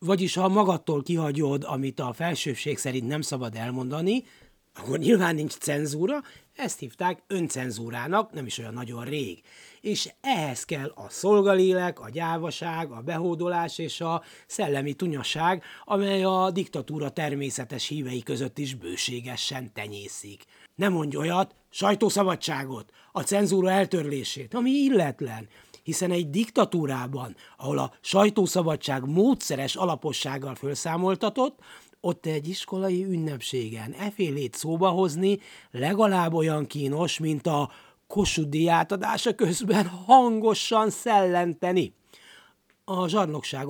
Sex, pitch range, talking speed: male, 140-190 Hz, 115 wpm